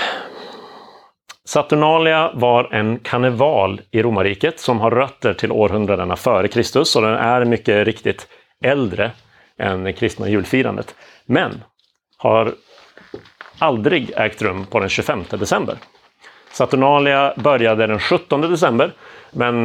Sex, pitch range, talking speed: male, 100-125 Hz, 115 wpm